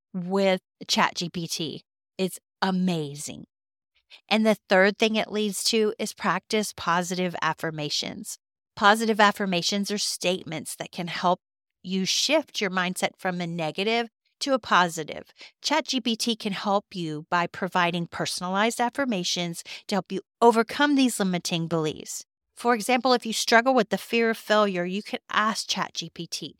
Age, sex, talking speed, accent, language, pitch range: 40-59, female, 140 wpm, American, English, 180-220 Hz